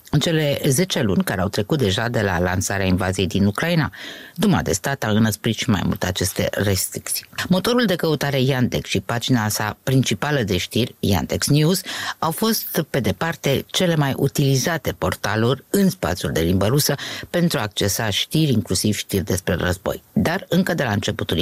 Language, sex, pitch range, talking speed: Romanian, female, 105-150 Hz, 175 wpm